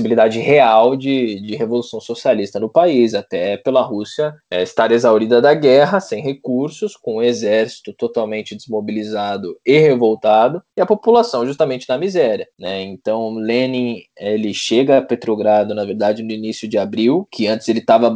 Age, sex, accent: 20-39, male, Brazilian